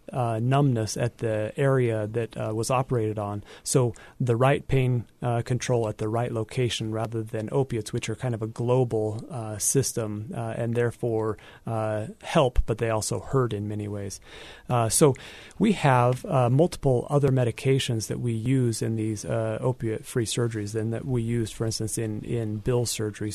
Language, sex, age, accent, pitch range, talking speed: English, male, 30-49, American, 110-130 Hz, 175 wpm